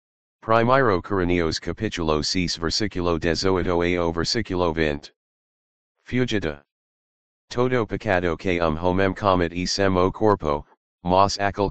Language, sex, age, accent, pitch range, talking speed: English, male, 40-59, American, 85-100 Hz, 120 wpm